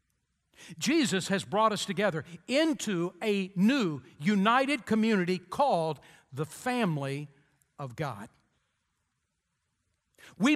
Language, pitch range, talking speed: English, 180-235 Hz, 90 wpm